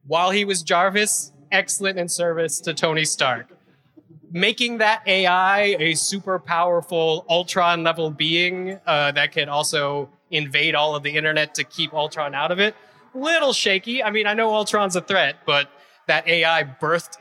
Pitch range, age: 145-190 Hz, 20-39